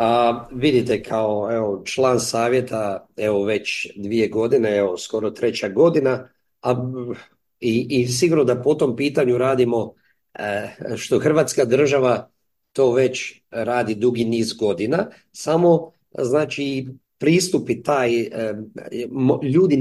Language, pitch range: Croatian, 115-135 Hz